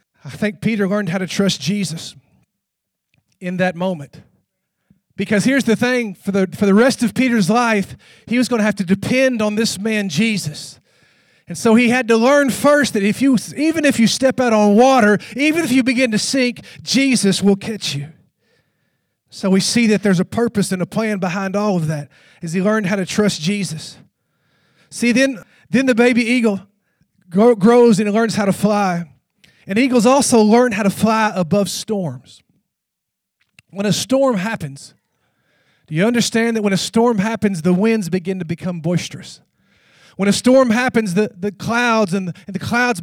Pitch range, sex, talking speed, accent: 190-240 Hz, male, 190 wpm, American